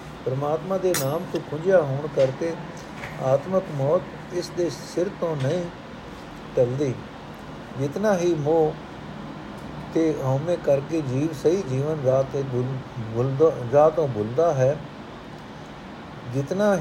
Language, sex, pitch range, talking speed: Punjabi, male, 130-165 Hz, 105 wpm